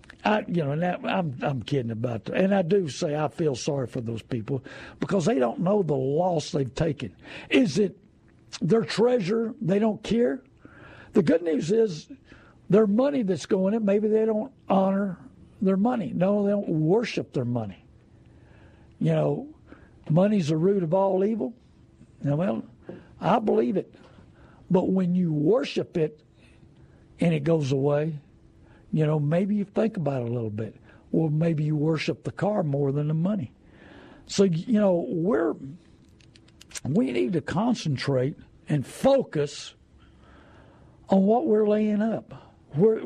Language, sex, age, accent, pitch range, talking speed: English, male, 60-79, American, 140-205 Hz, 155 wpm